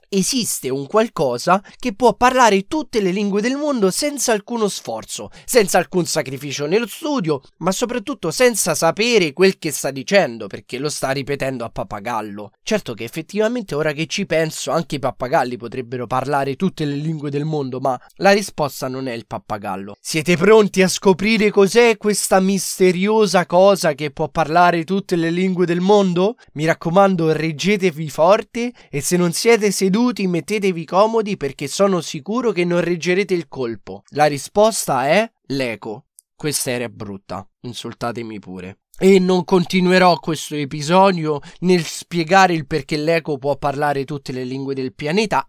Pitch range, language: 140-200 Hz, Italian